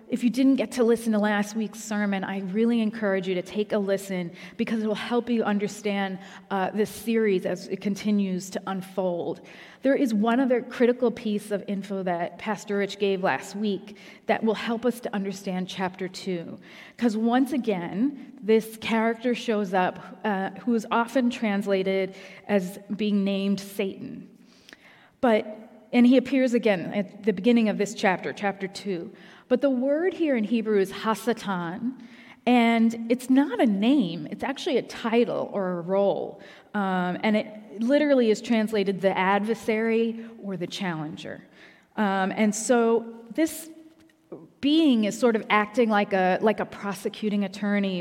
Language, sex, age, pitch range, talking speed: English, female, 30-49, 195-230 Hz, 160 wpm